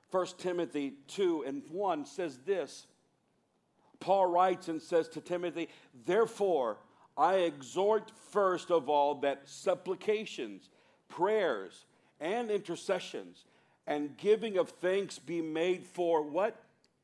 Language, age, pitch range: English, 50-69, 140-190 Hz